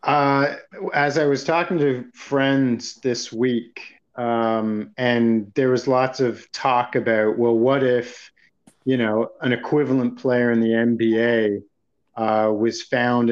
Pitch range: 115-145 Hz